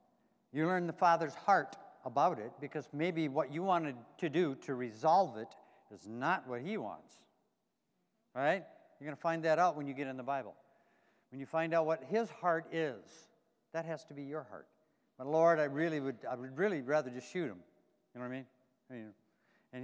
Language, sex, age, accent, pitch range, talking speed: English, male, 60-79, American, 145-180 Hz, 205 wpm